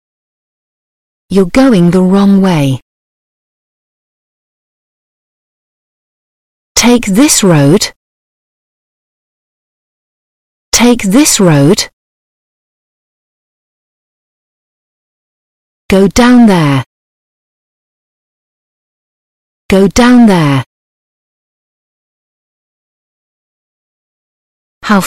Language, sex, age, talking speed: Vietnamese, female, 40-59, 45 wpm